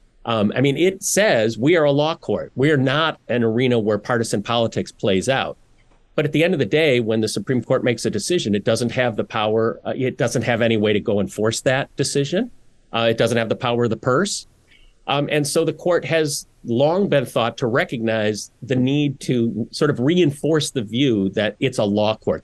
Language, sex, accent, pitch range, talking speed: English, male, American, 110-135 Hz, 220 wpm